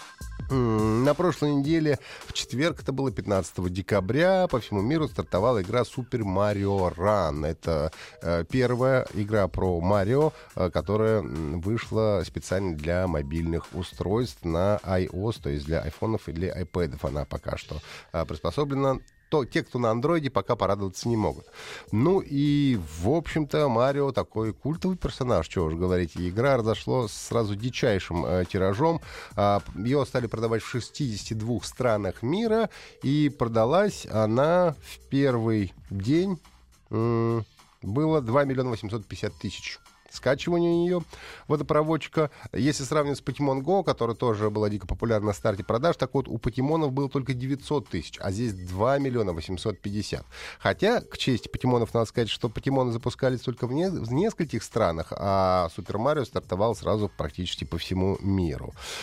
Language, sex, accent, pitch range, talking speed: Russian, male, native, 95-135 Hz, 145 wpm